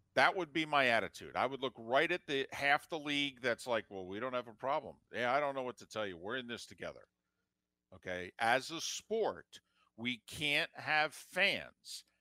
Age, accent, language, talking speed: 50-69, American, English, 205 wpm